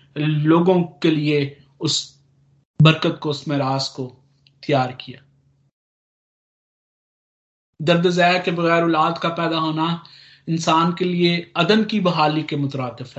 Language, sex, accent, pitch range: Hindi, male, native, 140-180 Hz